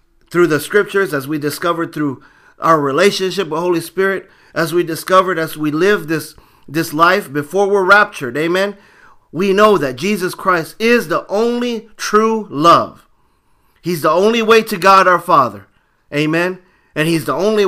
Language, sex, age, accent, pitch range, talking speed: English, male, 40-59, American, 135-180 Hz, 165 wpm